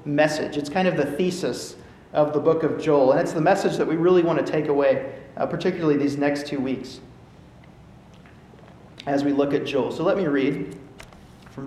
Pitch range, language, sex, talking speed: 140-170 Hz, English, male, 195 wpm